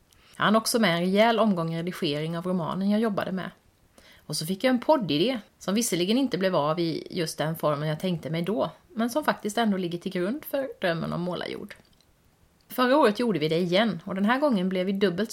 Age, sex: 30-49, female